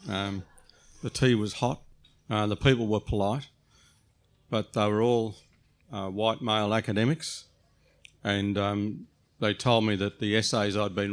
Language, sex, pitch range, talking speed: English, male, 95-115 Hz, 150 wpm